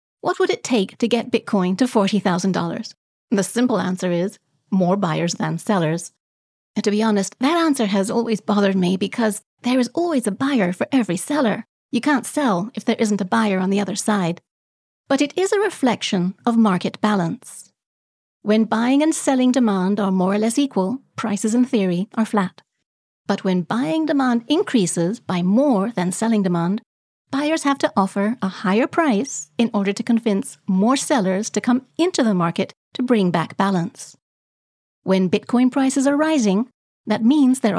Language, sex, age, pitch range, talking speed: English, female, 30-49, 195-255 Hz, 175 wpm